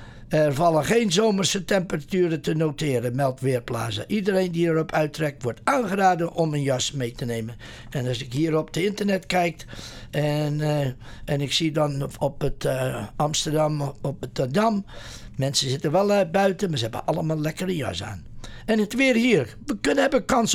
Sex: male